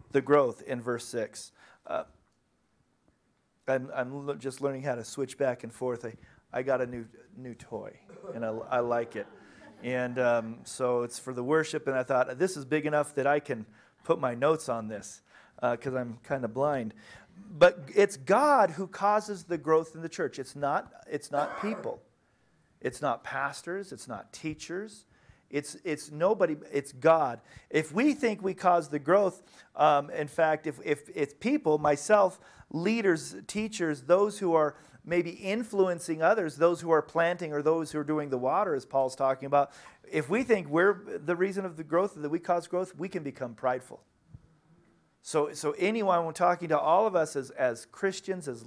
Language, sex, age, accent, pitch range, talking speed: English, male, 40-59, American, 135-180 Hz, 185 wpm